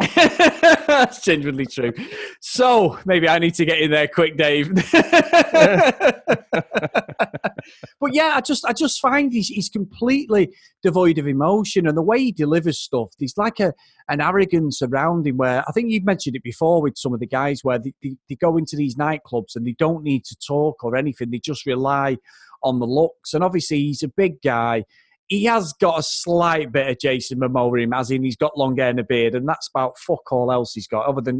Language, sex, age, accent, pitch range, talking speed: English, male, 30-49, British, 130-190 Hz, 205 wpm